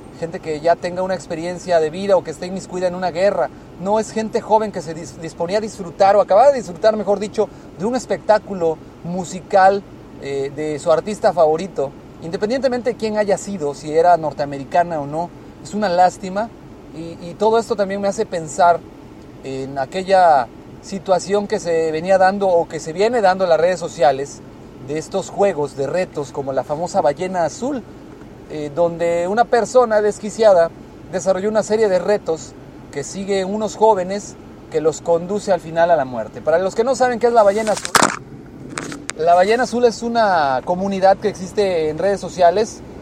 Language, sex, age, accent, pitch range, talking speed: Spanish, male, 40-59, Mexican, 160-205 Hz, 180 wpm